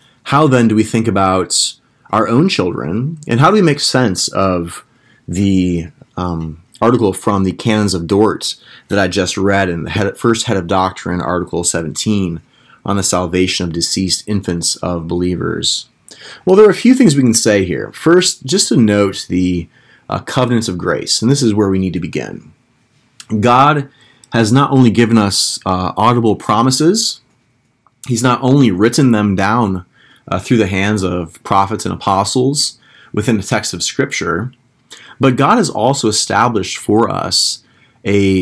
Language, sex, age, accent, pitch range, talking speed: English, male, 30-49, American, 95-130 Hz, 165 wpm